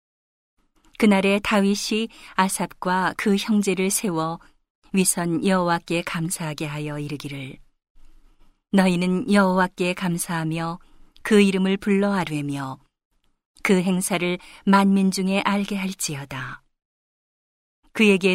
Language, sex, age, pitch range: Korean, female, 40-59, 165-200 Hz